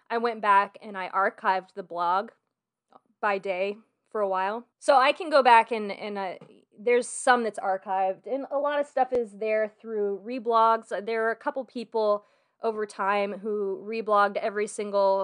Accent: American